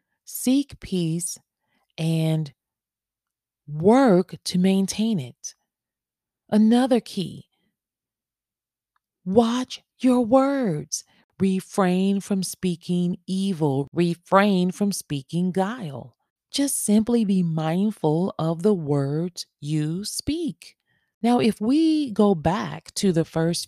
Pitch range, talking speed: 160-225 Hz, 95 wpm